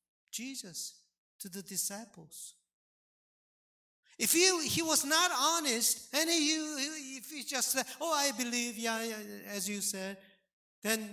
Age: 50-69